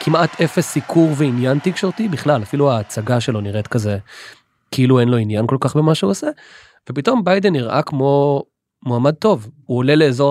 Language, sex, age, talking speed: Hebrew, male, 20-39, 170 wpm